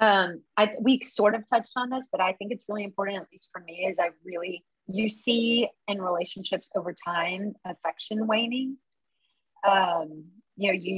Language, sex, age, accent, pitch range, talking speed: English, female, 30-49, American, 175-210 Hz, 180 wpm